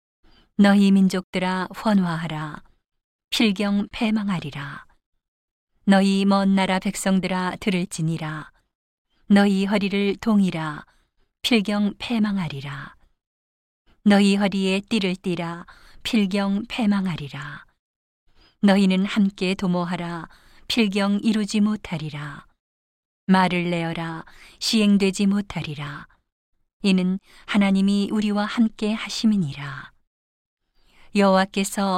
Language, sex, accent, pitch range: Korean, female, native, 180-205 Hz